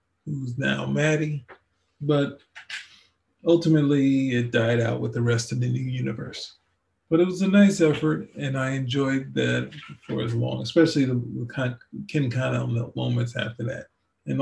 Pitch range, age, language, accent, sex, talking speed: 110-155 Hz, 40-59, English, American, male, 150 wpm